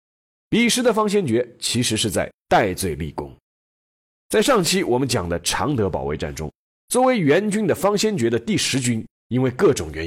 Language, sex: Chinese, male